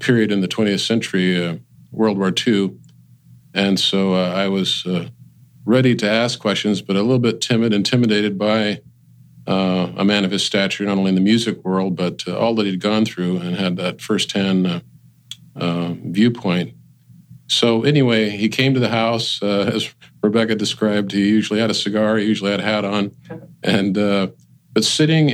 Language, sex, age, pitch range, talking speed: English, male, 50-69, 95-110 Hz, 185 wpm